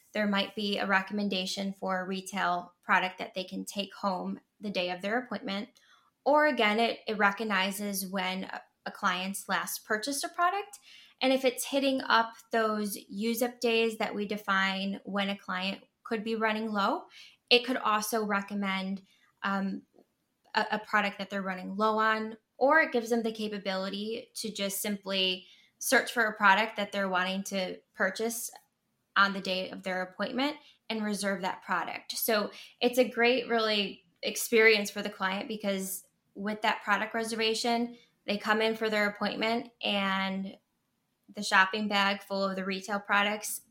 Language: English